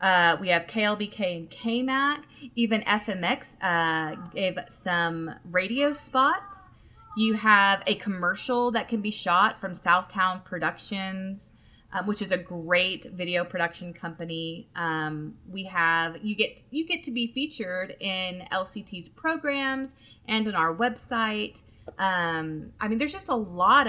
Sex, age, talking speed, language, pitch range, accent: female, 30-49, 140 wpm, English, 170-215 Hz, American